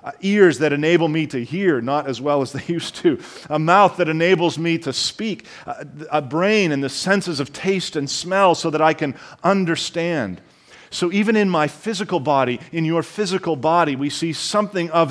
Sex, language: male, English